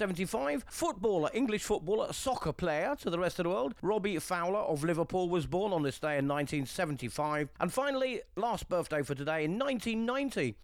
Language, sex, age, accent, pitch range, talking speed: English, male, 40-59, British, 150-215 Hz, 175 wpm